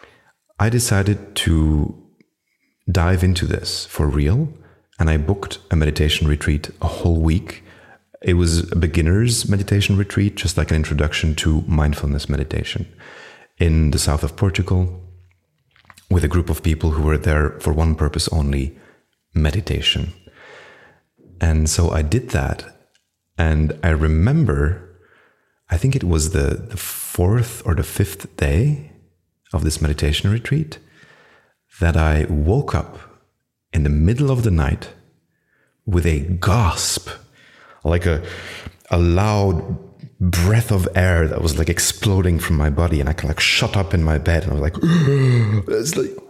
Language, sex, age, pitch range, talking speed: English, male, 30-49, 80-100 Hz, 145 wpm